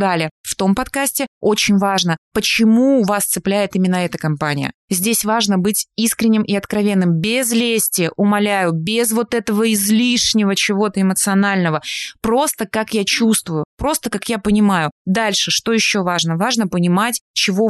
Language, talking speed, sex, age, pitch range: Russian, 140 wpm, female, 20-39, 180-220 Hz